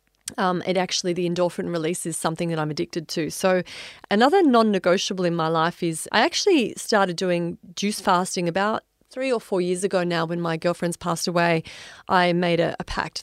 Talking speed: 190 wpm